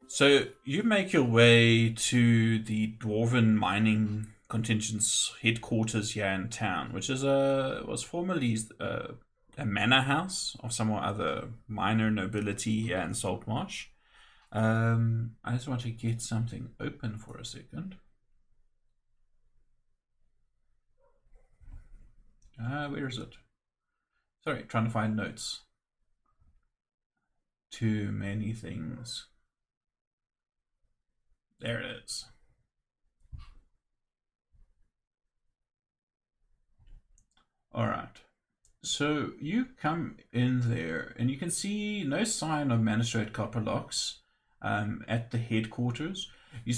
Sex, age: male, 30-49